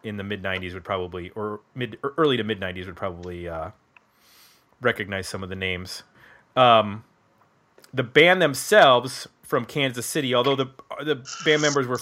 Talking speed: 170 wpm